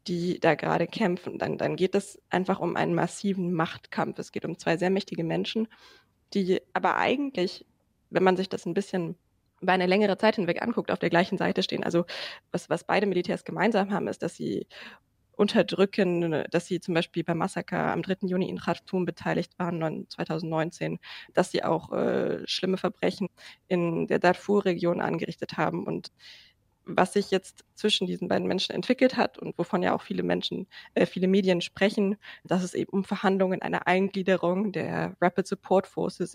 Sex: female